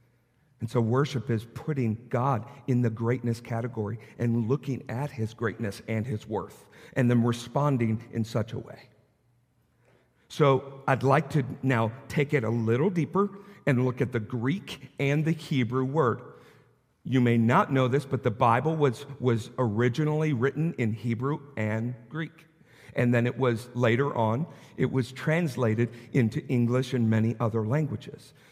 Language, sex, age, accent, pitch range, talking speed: English, male, 50-69, American, 120-150 Hz, 160 wpm